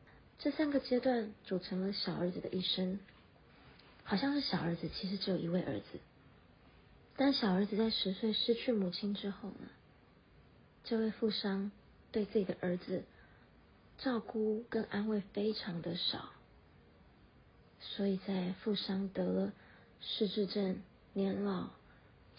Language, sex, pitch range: Chinese, female, 185-220 Hz